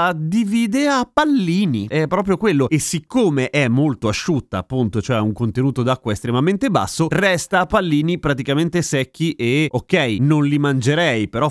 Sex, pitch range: male, 115-175 Hz